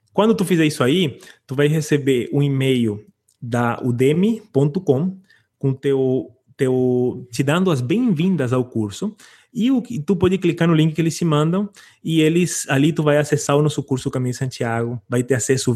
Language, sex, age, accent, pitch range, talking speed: Portuguese, male, 20-39, Brazilian, 125-160 Hz, 180 wpm